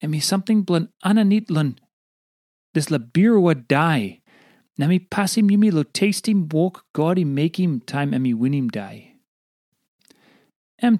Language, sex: English, male